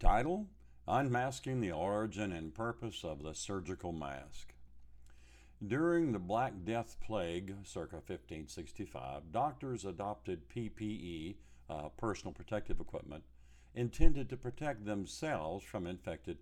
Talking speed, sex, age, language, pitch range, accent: 110 wpm, male, 50-69, English, 80-115 Hz, American